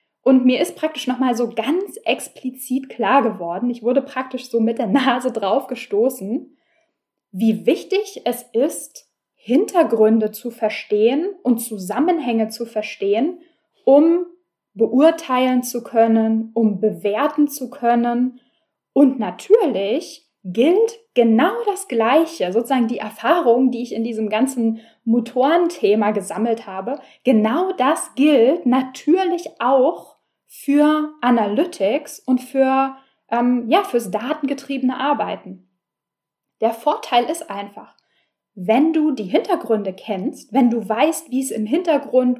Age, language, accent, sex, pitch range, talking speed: 10-29, German, German, female, 225-305 Hz, 120 wpm